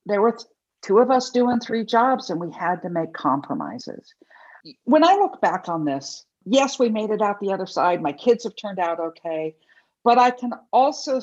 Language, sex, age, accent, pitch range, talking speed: English, female, 60-79, American, 165-230 Hz, 205 wpm